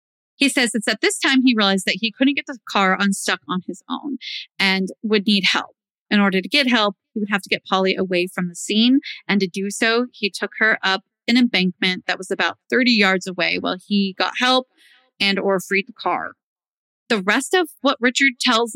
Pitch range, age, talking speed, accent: 195-250 Hz, 30-49, 220 wpm, American